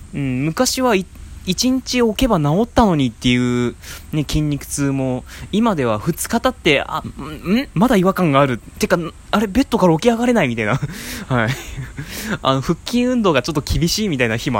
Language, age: Japanese, 20-39